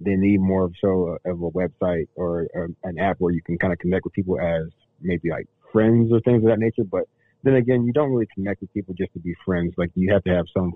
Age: 30-49